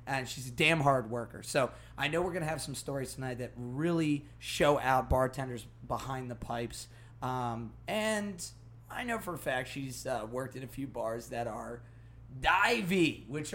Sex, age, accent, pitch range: male, 30-49, American, 120-150 Hz